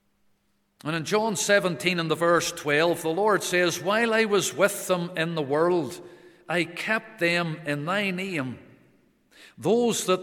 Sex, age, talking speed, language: male, 50-69, 160 wpm, English